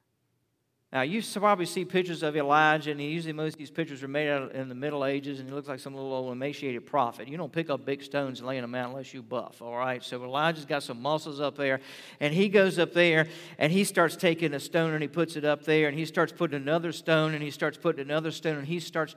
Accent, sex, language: American, male, English